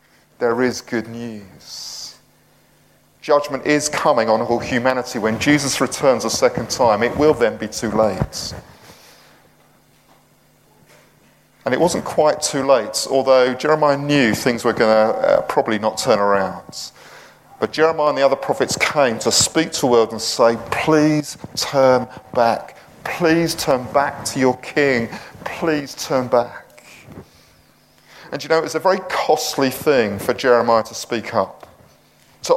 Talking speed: 145 wpm